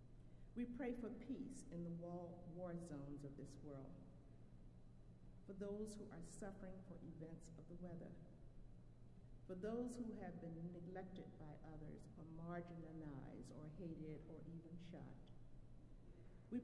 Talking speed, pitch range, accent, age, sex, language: 135 wpm, 155-190 Hz, American, 50-69, female, English